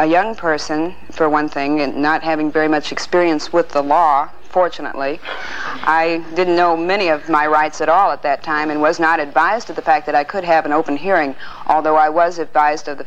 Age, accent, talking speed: 50-69, American, 220 wpm